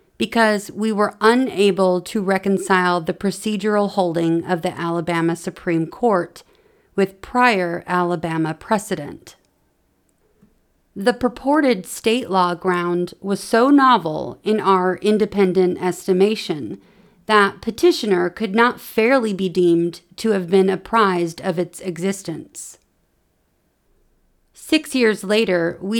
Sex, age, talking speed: female, 40-59, 110 wpm